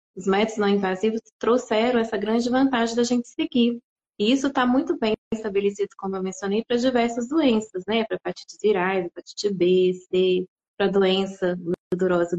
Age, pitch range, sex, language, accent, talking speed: 20-39, 190-240 Hz, female, Portuguese, Brazilian, 160 wpm